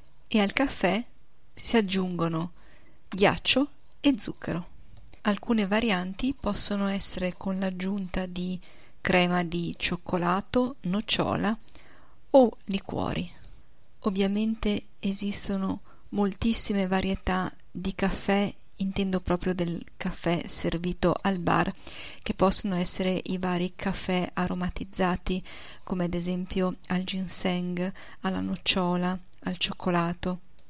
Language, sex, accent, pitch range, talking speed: Italian, female, native, 180-205 Hz, 100 wpm